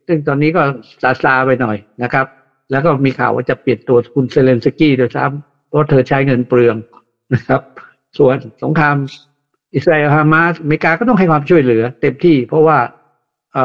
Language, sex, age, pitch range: Thai, male, 60-79, 125-160 Hz